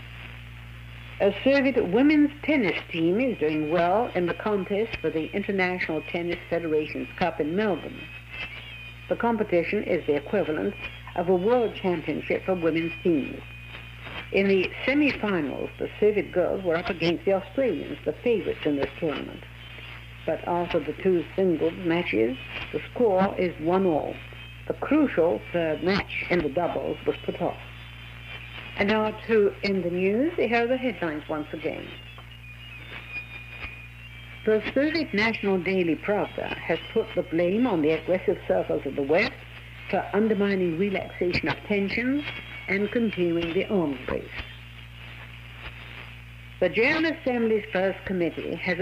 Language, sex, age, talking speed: Italian, female, 60-79, 140 wpm